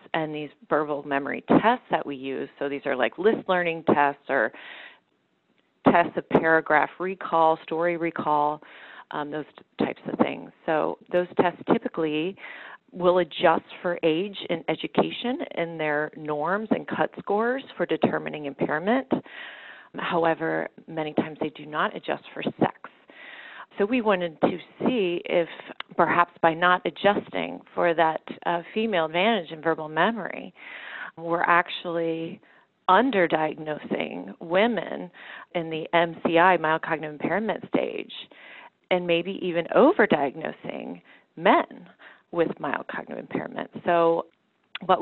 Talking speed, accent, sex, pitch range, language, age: 130 wpm, American, female, 155-180 Hz, English, 30-49